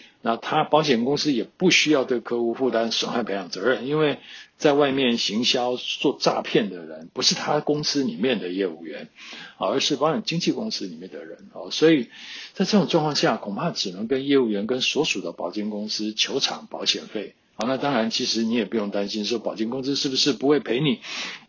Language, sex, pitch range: Chinese, male, 110-150 Hz